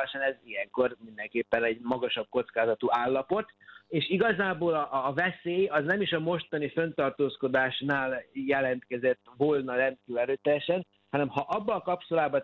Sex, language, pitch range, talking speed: male, Hungarian, 125-155 Hz, 130 wpm